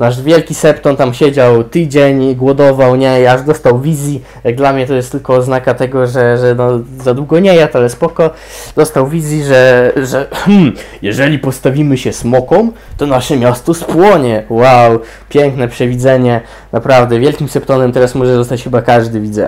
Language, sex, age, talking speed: English, male, 20-39, 155 wpm